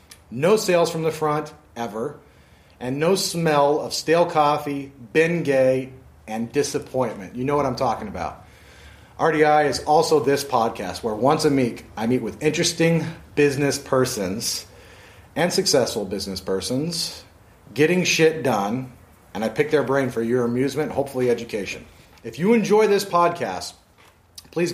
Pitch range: 120-160 Hz